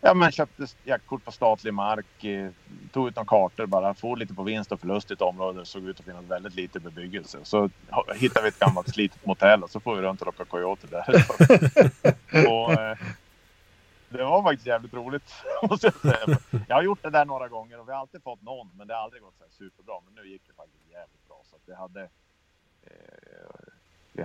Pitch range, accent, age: 95-140 Hz, Norwegian, 30-49